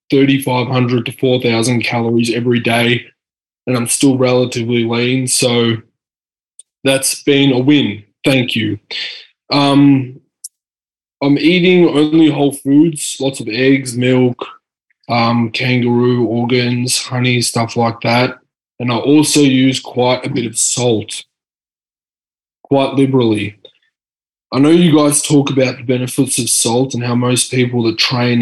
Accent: Australian